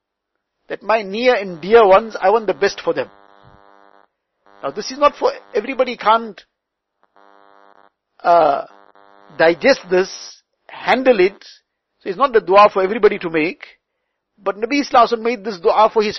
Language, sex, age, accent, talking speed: English, male, 50-69, Indian, 150 wpm